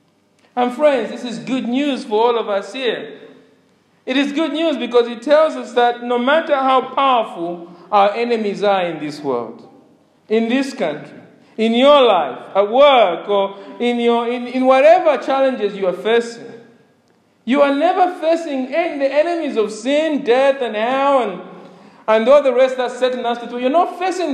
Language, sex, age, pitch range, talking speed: English, male, 50-69, 190-275 Hz, 180 wpm